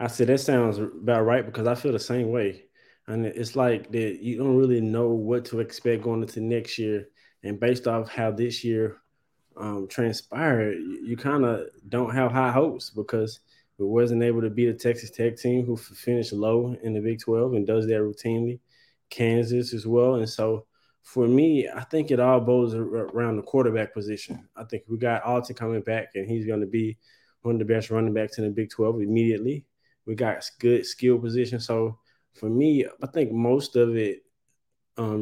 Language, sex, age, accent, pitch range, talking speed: English, male, 20-39, American, 110-125 Hz, 200 wpm